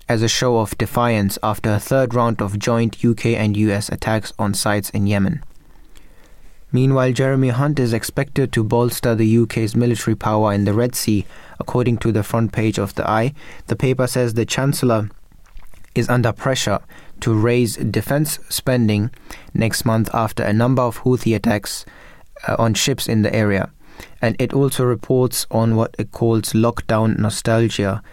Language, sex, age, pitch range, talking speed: English, male, 20-39, 105-125 Hz, 165 wpm